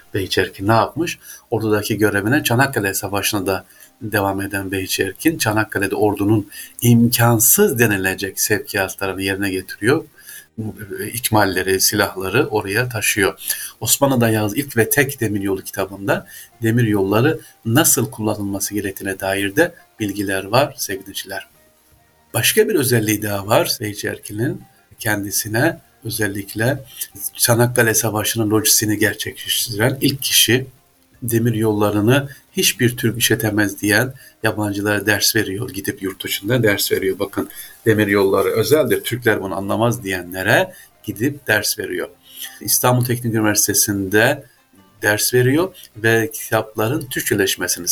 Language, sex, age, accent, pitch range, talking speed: Turkish, male, 50-69, native, 100-120 Hz, 110 wpm